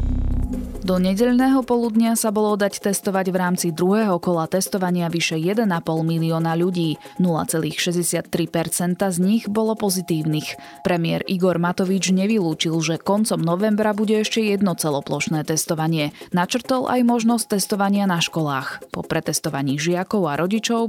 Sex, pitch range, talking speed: female, 160-200 Hz, 125 wpm